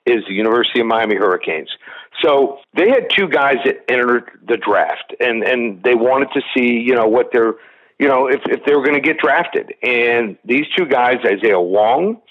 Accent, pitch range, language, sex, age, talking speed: American, 125-160 Hz, English, male, 50-69, 195 wpm